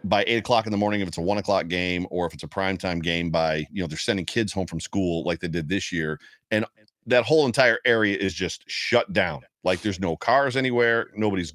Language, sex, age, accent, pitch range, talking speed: English, male, 40-59, American, 100-120 Hz, 245 wpm